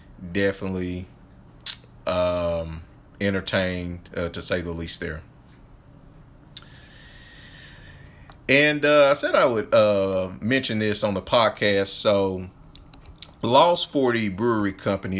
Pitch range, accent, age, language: 95-110 Hz, American, 30-49, English